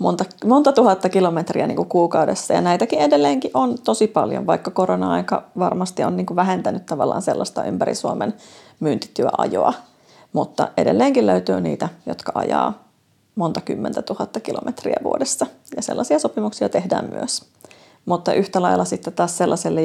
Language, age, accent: Finnish, 30-49, native